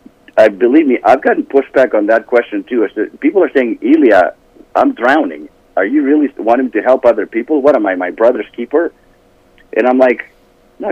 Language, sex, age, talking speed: English, male, 50-69, 190 wpm